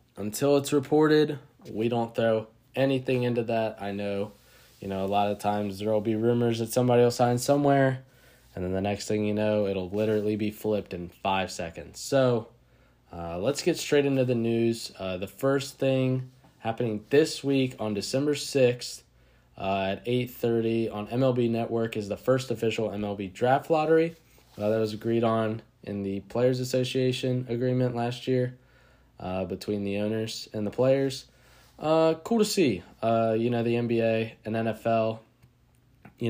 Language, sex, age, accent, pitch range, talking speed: English, male, 20-39, American, 110-135 Hz, 170 wpm